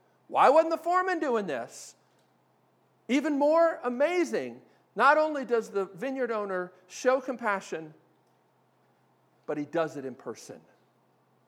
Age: 50-69